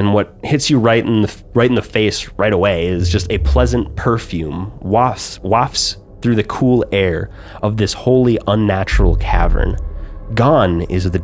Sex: male